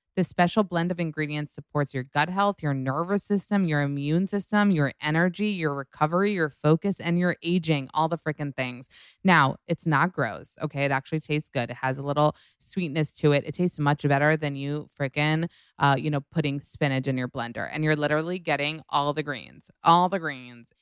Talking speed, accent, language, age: 195 wpm, American, English, 20-39